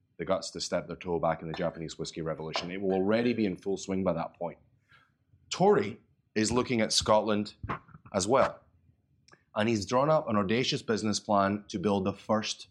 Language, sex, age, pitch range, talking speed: English, male, 30-49, 95-115 Hz, 195 wpm